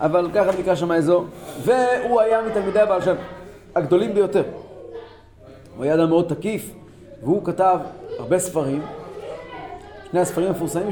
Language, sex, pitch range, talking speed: Hebrew, male, 165-240 Hz, 130 wpm